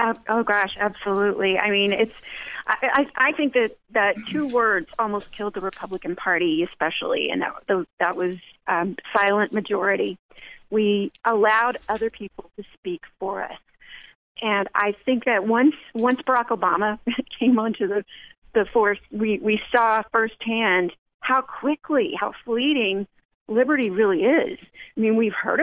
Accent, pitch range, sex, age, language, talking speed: American, 200-245 Hz, female, 30-49, English, 150 wpm